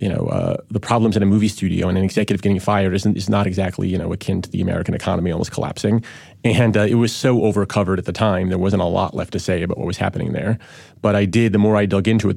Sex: male